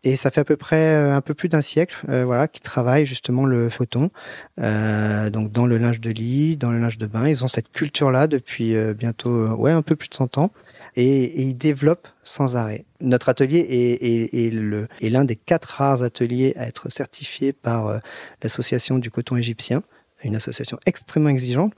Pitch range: 115-145 Hz